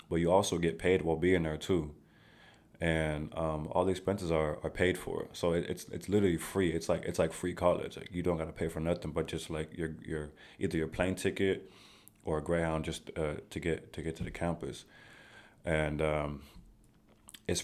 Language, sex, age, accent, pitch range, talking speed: English, male, 20-39, American, 80-95 Hz, 210 wpm